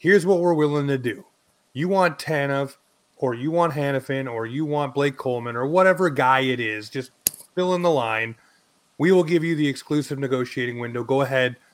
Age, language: 30-49, English